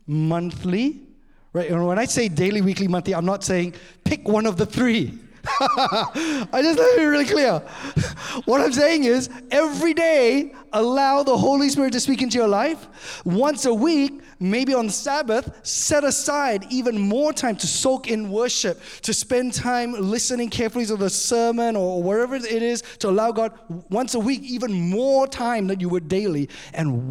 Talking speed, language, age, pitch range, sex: 180 wpm, English, 30-49, 170-245 Hz, male